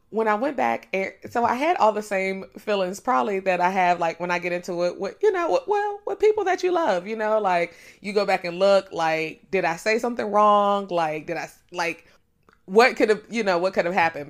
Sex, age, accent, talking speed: female, 20-39, American, 240 wpm